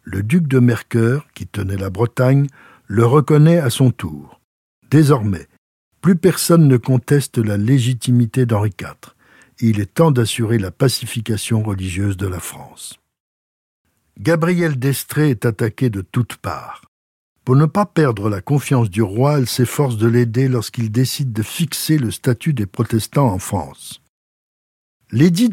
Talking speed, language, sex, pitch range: 145 wpm, French, male, 110-145 Hz